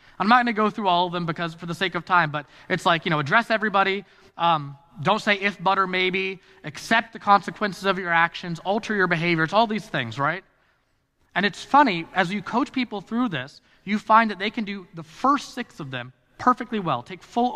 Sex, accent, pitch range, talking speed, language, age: male, American, 130-195 Hz, 220 wpm, English, 20-39